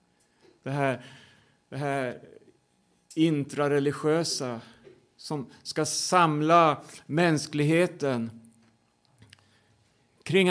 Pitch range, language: 140-190 Hz, Swedish